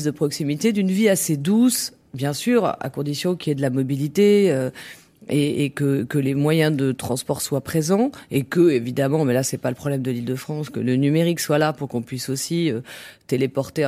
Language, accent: French, French